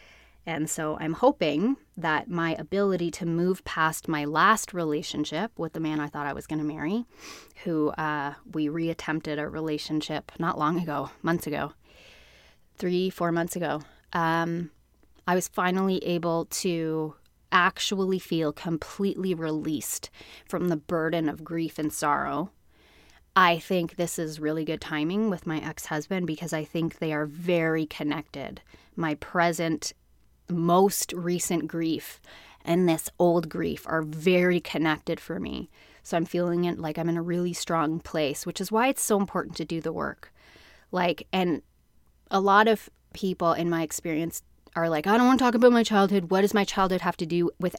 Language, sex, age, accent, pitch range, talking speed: English, female, 20-39, American, 160-200 Hz, 170 wpm